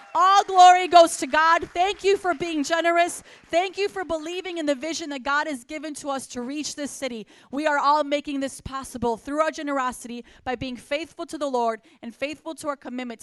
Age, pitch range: 30-49, 255-310 Hz